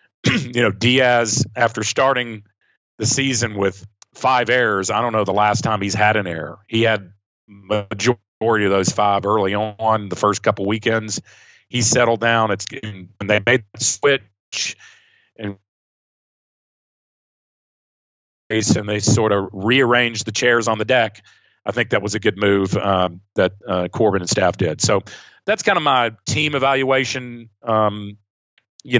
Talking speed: 155 wpm